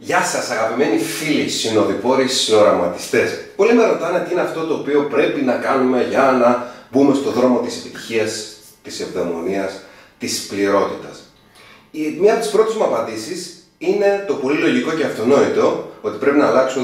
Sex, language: male, Greek